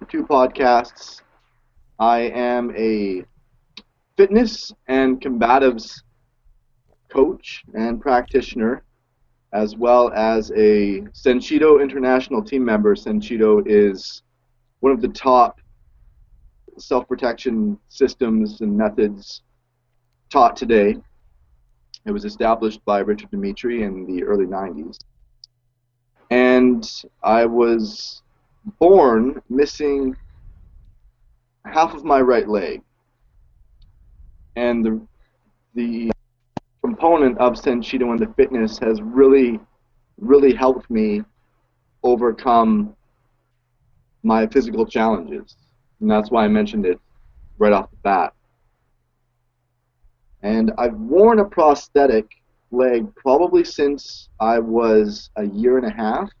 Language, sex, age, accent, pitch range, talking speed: English, male, 30-49, American, 110-135 Hz, 100 wpm